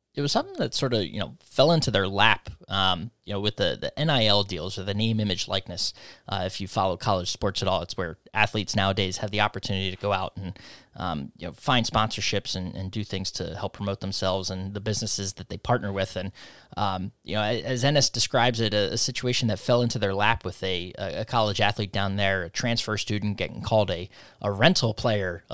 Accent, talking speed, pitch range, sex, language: American, 225 wpm, 100-115 Hz, male, English